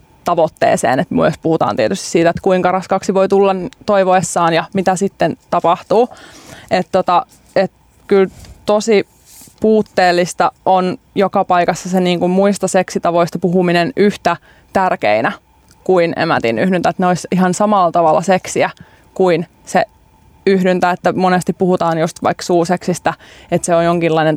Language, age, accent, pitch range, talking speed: Finnish, 20-39, native, 175-195 Hz, 125 wpm